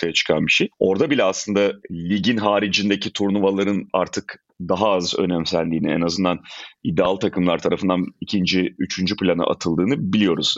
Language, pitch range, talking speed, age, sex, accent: Turkish, 95-120 Hz, 130 wpm, 40-59, male, native